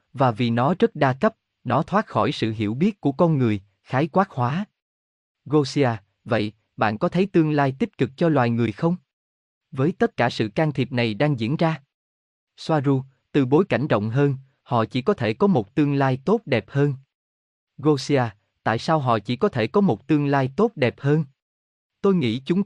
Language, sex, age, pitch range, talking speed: Vietnamese, male, 20-39, 110-155 Hz, 200 wpm